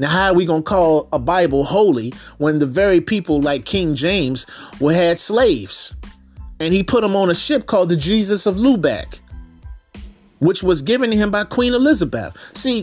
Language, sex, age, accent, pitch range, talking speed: English, male, 30-49, American, 145-195 Hz, 185 wpm